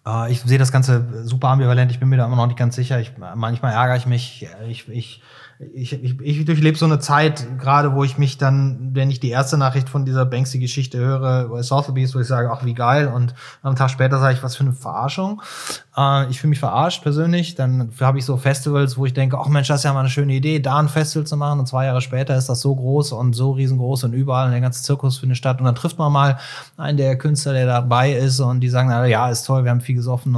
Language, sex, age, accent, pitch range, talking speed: German, male, 20-39, German, 120-135 Hz, 255 wpm